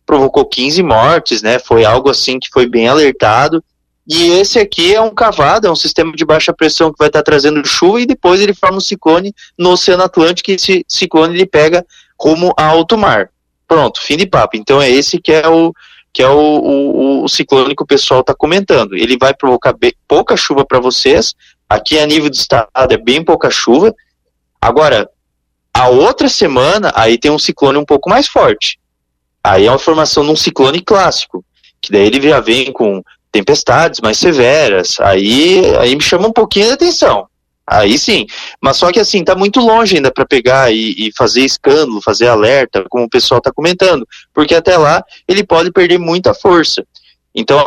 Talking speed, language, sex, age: 185 wpm, Portuguese, male, 20-39